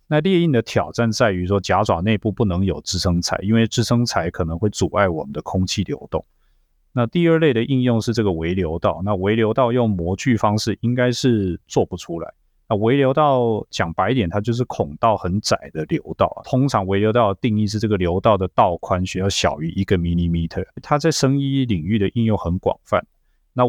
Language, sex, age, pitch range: Chinese, male, 20-39, 90-115 Hz